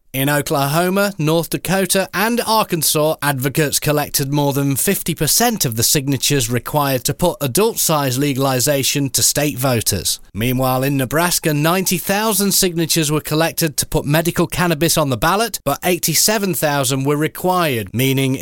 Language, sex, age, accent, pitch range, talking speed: English, male, 30-49, British, 140-185 Hz, 135 wpm